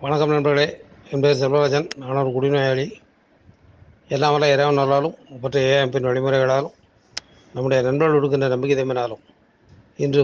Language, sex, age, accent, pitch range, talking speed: Tamil, male, 30-49, native, 130-150 Hz, 105 wpm